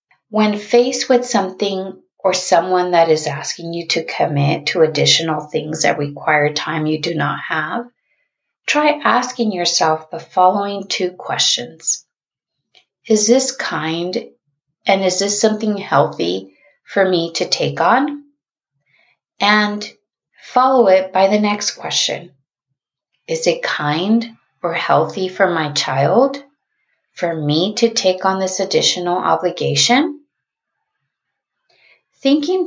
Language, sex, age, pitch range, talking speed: English, female, 30-49, 155-210 Hz, 120 wpm